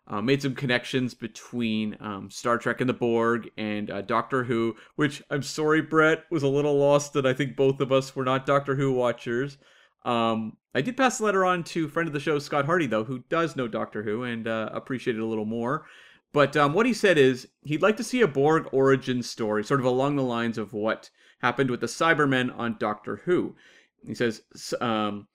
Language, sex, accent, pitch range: English, male, American, 120-155 Hz